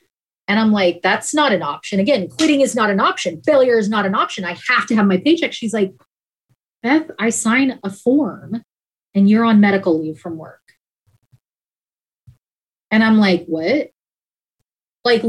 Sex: female